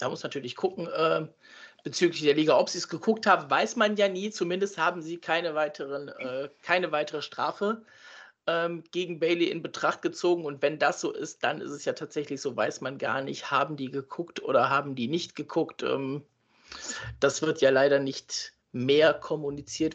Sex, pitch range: male, 135-175 Hz